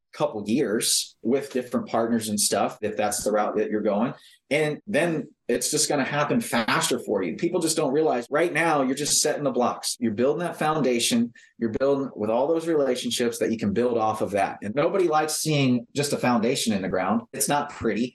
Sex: male